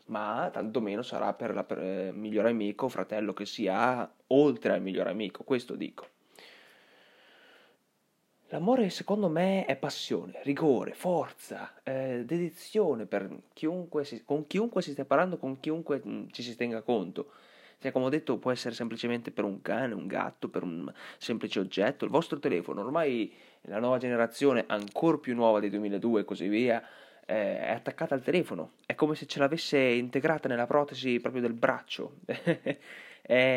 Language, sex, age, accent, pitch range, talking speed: Italian, male, 20-39, native, 110-140 Hz, 160 wpm